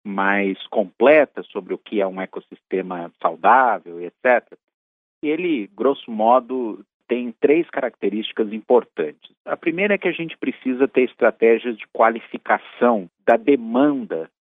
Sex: male